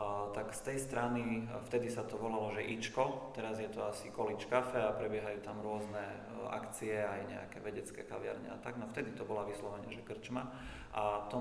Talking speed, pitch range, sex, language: 185 wpm, 105-115 Hz, male, Slovak